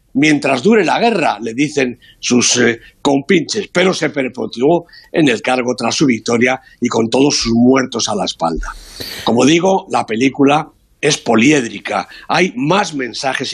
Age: 60-79